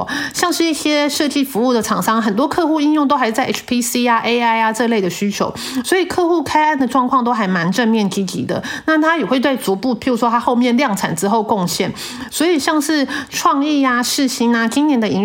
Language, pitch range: Chinese, 210-290 Hz